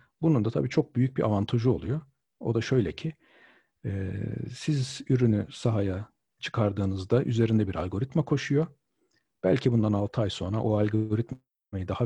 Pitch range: 105-135 Hz